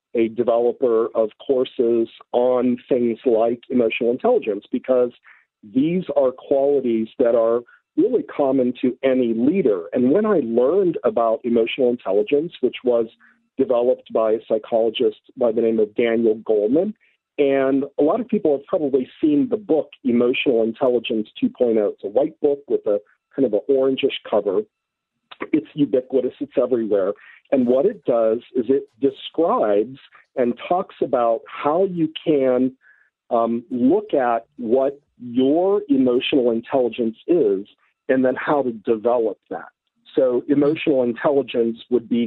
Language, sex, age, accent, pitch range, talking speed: English, male, 50-69, American, 120-180 Hz, 140 wpm